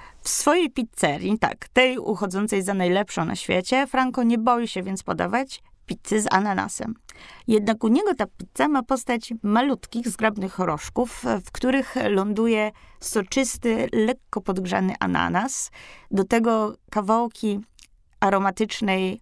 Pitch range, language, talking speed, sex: 195-245 Hz, Polish, 125 wpm, female